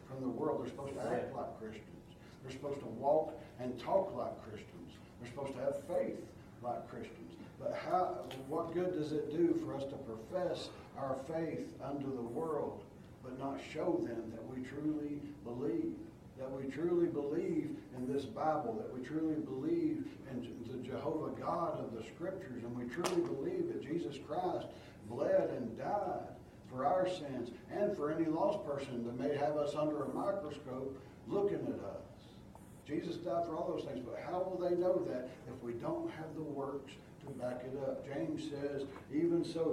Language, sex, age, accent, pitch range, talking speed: English, male, 60-79, American, 125-170 Hz, 180 wpm